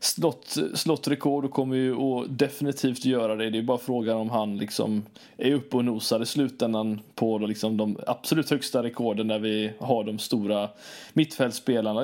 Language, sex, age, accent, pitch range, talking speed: Swedish, male, 20-39, native, 115-130 Hz, 180 wpm